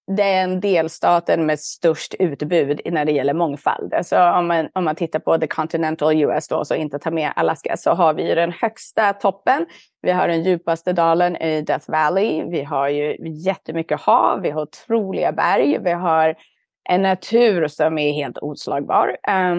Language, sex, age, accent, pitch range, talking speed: Swedish, female, 30-49, native, 160-195 Hz, 175 wpm